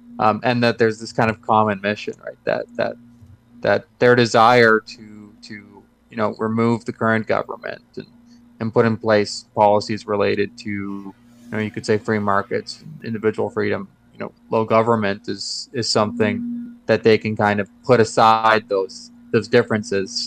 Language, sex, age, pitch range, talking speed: English, male, 20-39, 110-130 Hz, 170 wpm